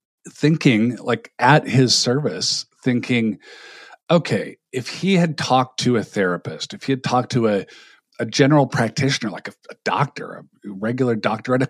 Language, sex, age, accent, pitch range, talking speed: English, male, 40-59, American, 115-150 Hz, 165 wpm